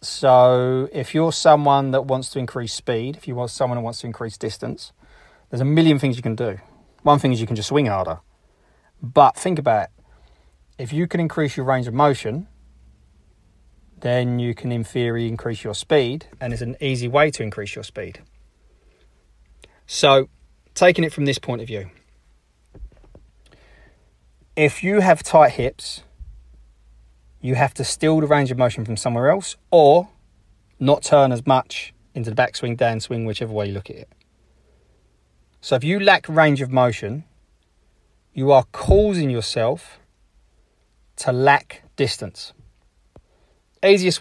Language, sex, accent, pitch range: English, male, British, 105-140 Hz